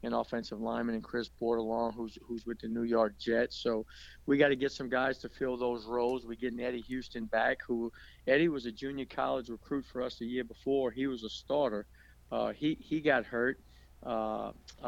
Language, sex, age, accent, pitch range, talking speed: English, male, 50-69, American, 115-130 Hz, 205 wpm